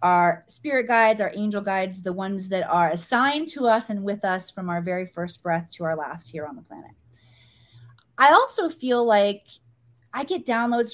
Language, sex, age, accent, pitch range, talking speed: English, female, 30-49, American, 145-235 Hz, 190 wpm